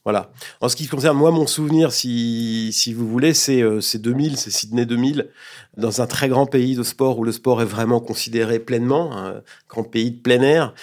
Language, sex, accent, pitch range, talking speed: French, male, French, 105-130 Hz, 205 wpm